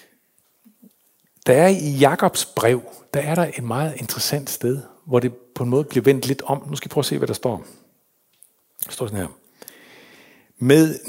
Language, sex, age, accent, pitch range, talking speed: English, male, 60-79, Danish, 115-155 Hz, 190 wpm